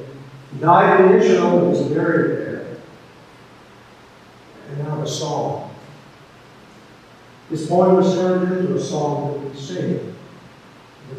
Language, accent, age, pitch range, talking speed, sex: English, American, 50-69, 135-170 Hz, 135 wpm, male